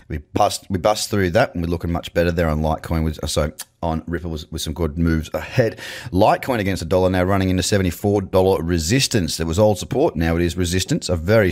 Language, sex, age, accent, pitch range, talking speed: English, male, 30-49, Australian, 85-110 Hz, 220 wpm